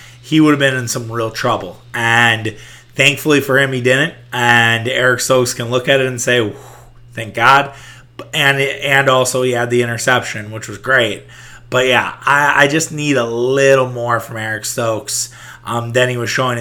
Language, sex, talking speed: English, male, 190 wpm